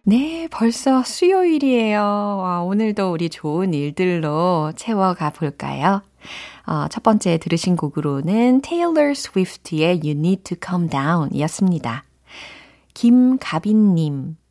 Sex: female